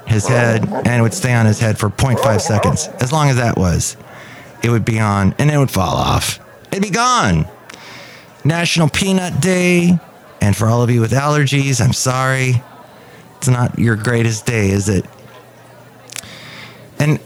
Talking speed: 170 wpm